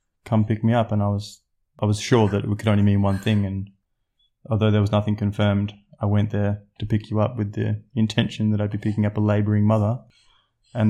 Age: 20-39